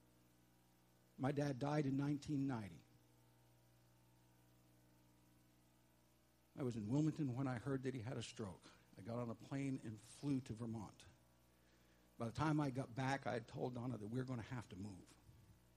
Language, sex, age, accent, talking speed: English, male, 60-79, American, 170 wpm